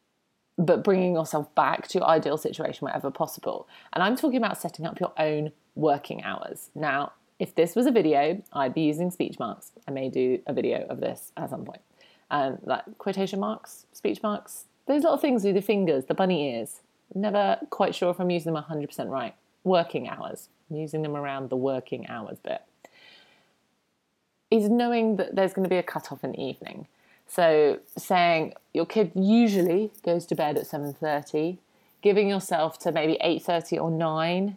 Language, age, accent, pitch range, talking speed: English, 30-49, British, 155-205 Hz, 180 wpm